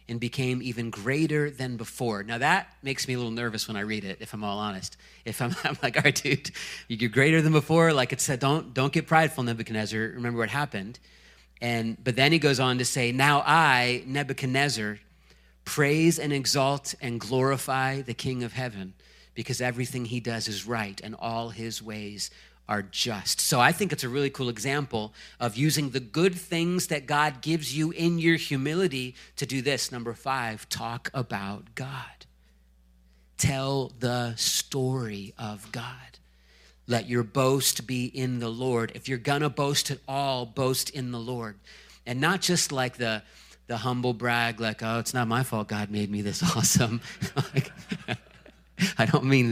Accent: American